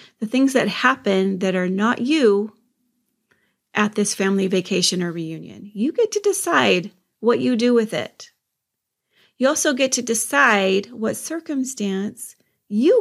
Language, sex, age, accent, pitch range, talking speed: English, female, 30-49, American, 190-235 Hz, 145 wpm